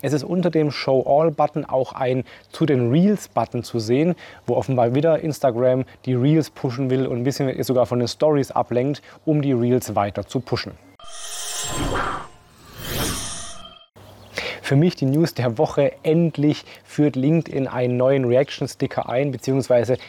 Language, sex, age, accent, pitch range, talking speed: German, male, 30-49, German, 120-145 Hz, 135 wpm